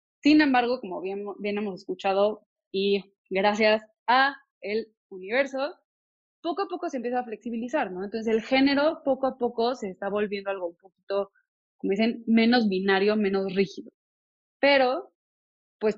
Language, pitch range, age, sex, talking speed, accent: Spanish, 200-250 Hz, 20-39, female, 150 wpm, Mexican